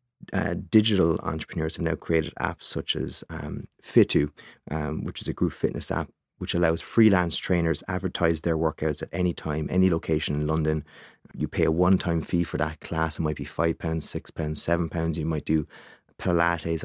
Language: English